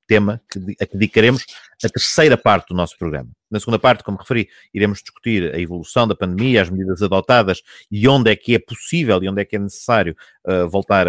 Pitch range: 95-115 Hz